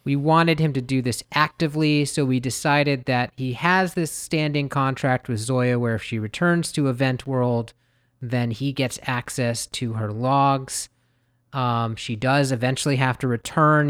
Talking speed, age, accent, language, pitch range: 170 wpm, 30-49, American, English, 115-140 Hz